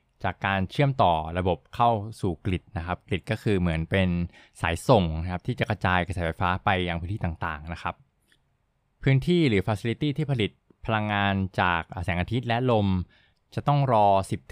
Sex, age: male, 20-39